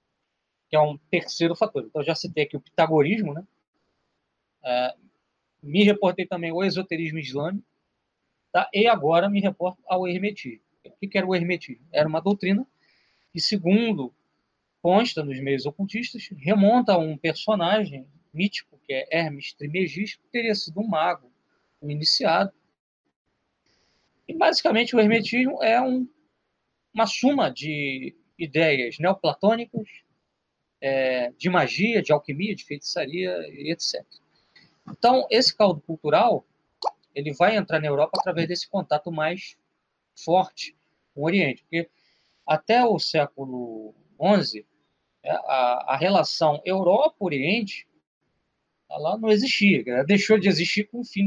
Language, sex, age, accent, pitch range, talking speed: Portuguese, male, 20-39, Brazilian, 150-210 Hz, 125 wpm